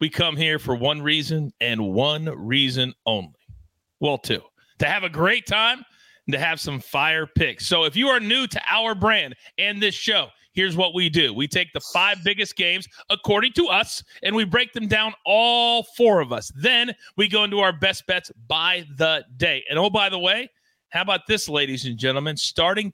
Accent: American